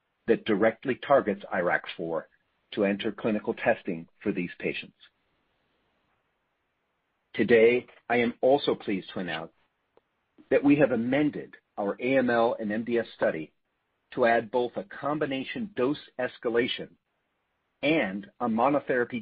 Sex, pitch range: male, 105-145 Hz